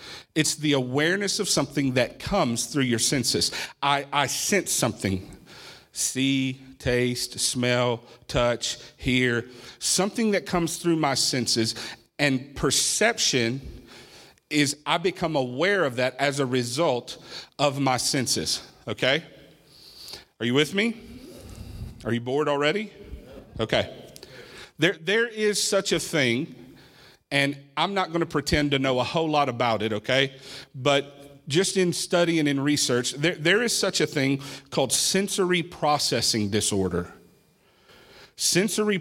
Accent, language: American, English